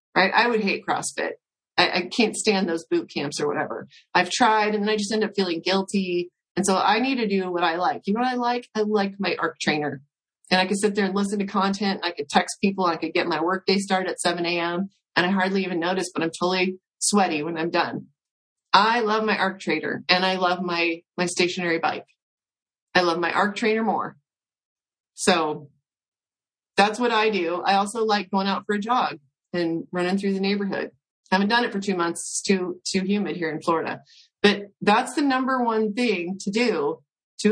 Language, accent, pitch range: English, American, 175-215 Hz